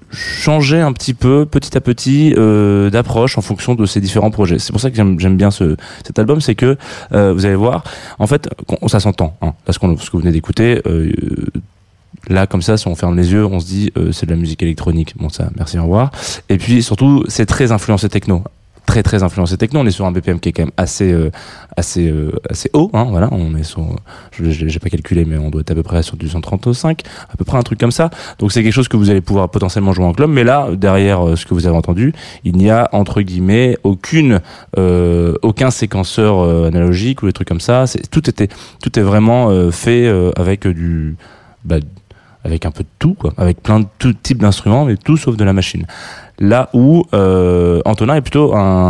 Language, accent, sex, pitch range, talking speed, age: French, French, male, 90-120 Hz, 235 wpm, 20-39